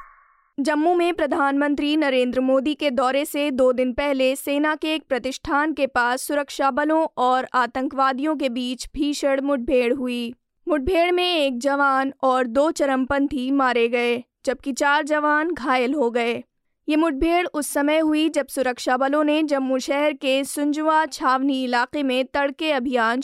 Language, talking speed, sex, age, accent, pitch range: Hindi, 145 wpm, female, 20-39, native, 255-300 Hz